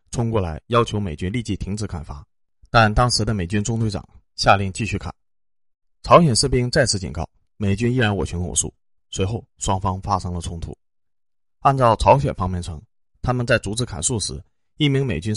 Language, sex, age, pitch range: Chinese, male, 30-49, 85-115 Hz